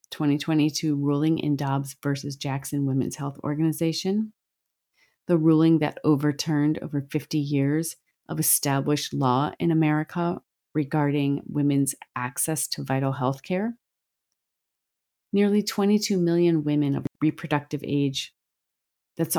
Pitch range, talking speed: 135-160 Hz, 110 wpm